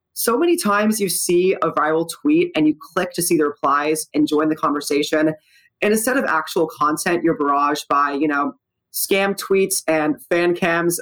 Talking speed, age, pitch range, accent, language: 185 wpm, 20-39, 155-195 Hz, American, English